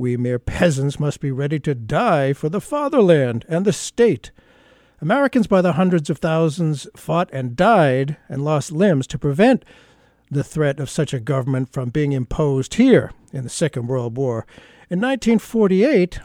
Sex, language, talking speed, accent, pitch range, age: male, English, 165 wpm, American, 140-200 Hz, 60-79